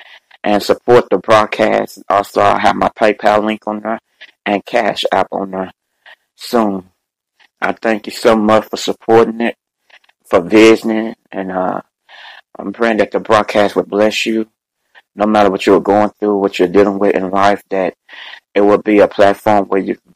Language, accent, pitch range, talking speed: English, American, 100-110 Hz, 180 wpm